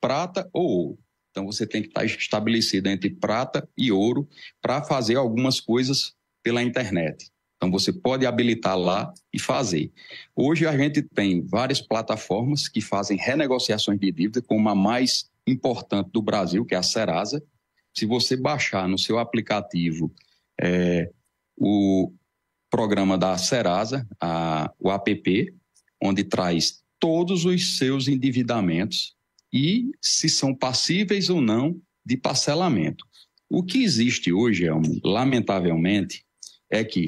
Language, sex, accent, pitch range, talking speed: Portuguese, male, Brazilian, 95-130 Hz, 130 wpm